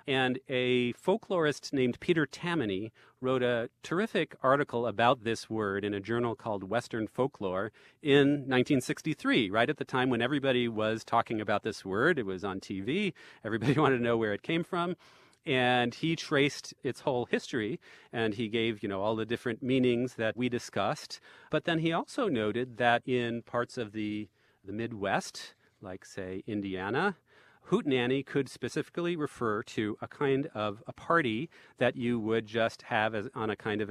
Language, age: English, 40-59